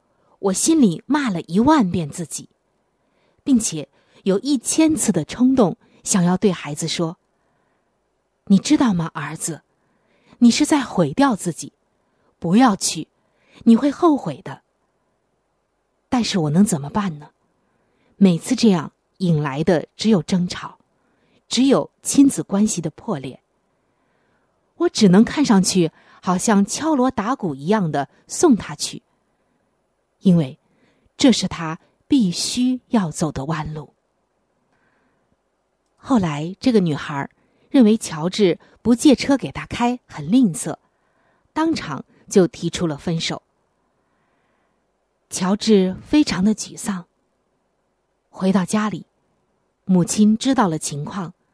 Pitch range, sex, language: 170-245 Hz, female, Chinese